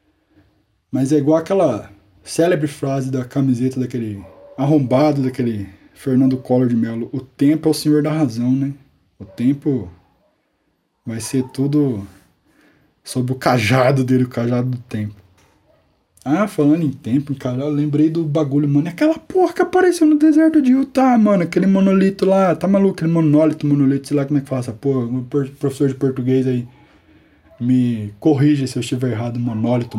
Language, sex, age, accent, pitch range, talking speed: Portuguese, male, 20-39, Brazilian, 125-170 Hz, 165 wpm